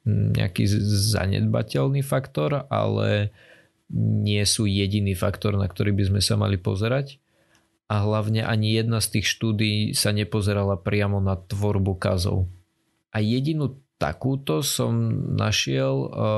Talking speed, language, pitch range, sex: 120 wpm, Slovak, 100-110 Hz, male